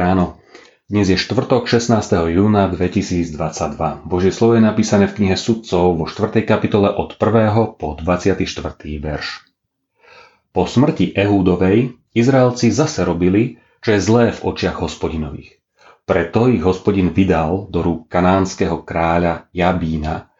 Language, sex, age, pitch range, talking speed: Slovak, male, 30-49, 85-110 Hz, 125 wpm